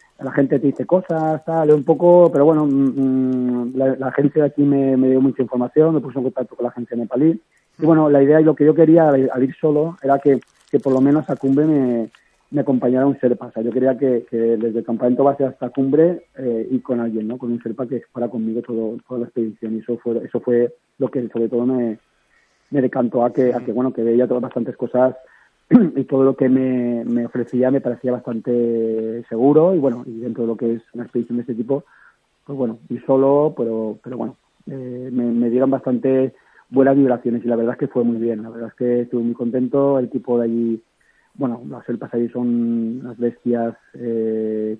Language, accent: Spanish, Spanish